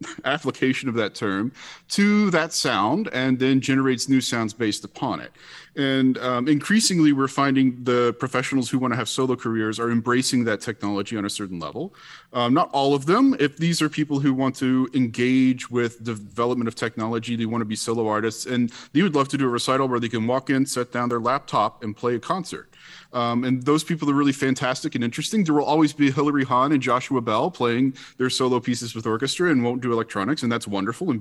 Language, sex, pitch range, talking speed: English, male, 115-140 Hz, 215 wpm